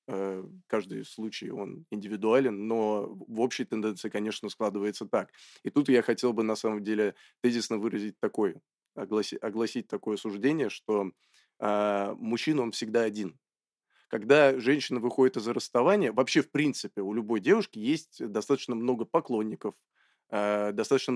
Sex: male